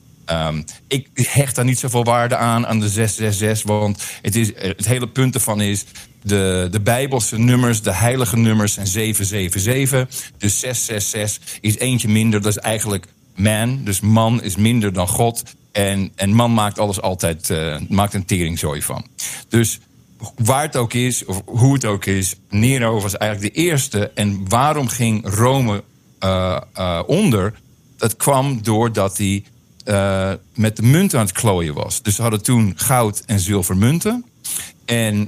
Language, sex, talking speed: Dutch, male, 160 wpm